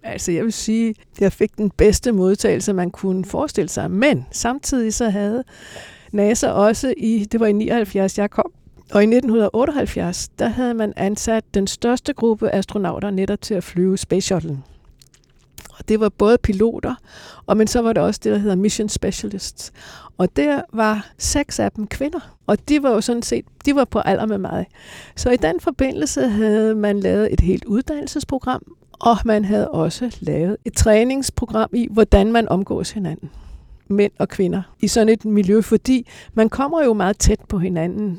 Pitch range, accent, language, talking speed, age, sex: 195-230 Hz, native, Danish, 180 wpm, 60-79, female